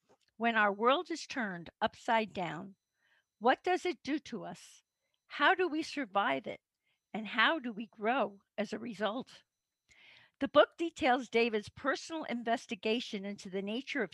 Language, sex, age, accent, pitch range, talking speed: English, female, 50-69, American, 205-260 Hz, 155 wpm